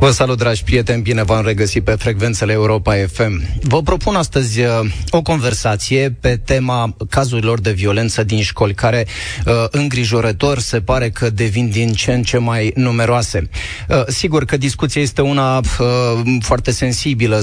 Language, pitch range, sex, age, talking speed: Romanian, 110-130 Hz, male, 20-39, 145 wpm